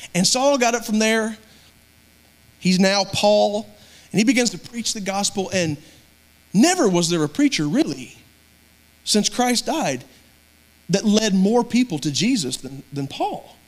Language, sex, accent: English, male, American